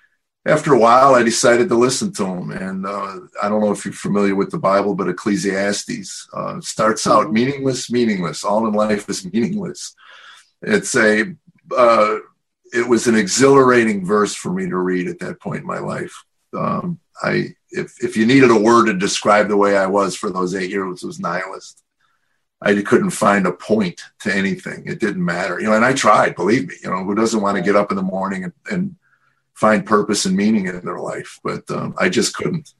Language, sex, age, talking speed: English, male, 50-69, 205 wpm